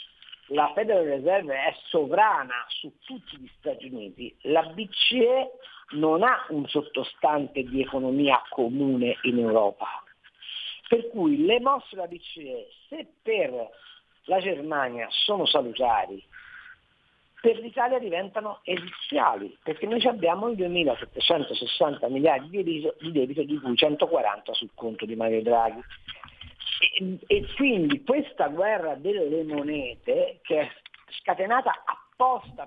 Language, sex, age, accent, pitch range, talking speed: Italian, female, 50-69, native, 155-255 Hz, 120 wpm